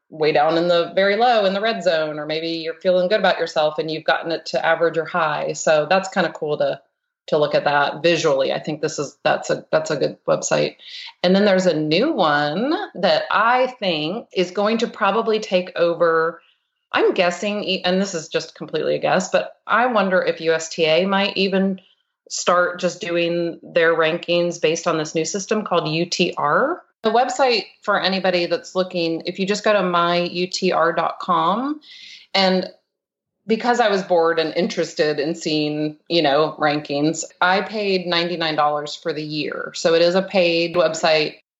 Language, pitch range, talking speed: English, 160-200 Hz, 180 wpm